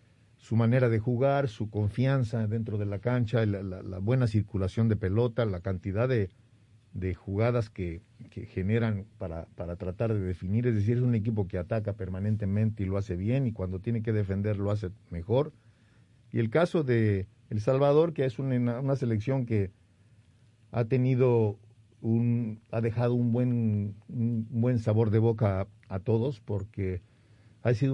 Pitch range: 105-120 Hz